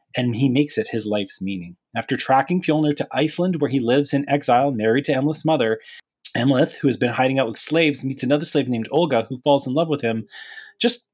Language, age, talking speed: English, 30-49, 220 wpm